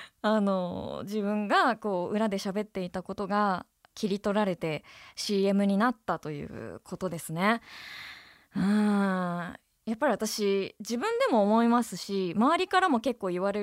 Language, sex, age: Japanese, female, 20-39